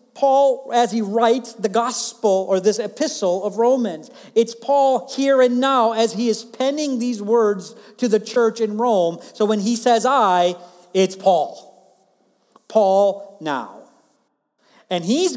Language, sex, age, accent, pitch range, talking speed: English, male, 50-69, American, 165-235 Hz, 150 wpm